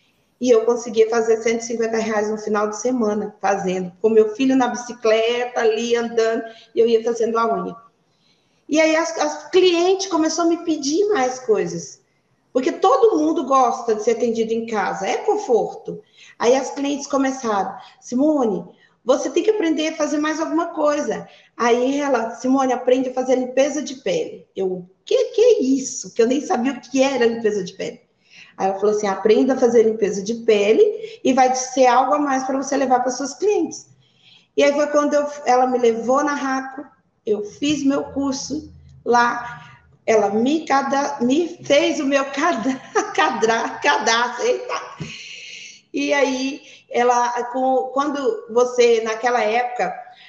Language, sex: Portuguese, female